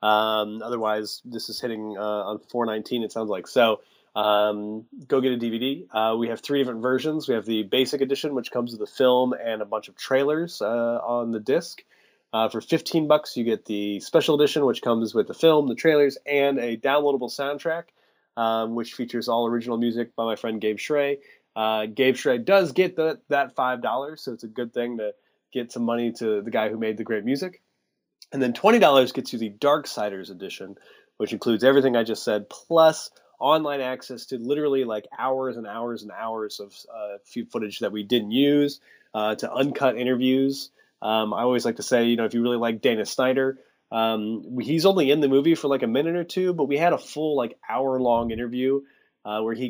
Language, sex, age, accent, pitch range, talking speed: English, male, 20-39, American, 110-140 Hz, 210 wpm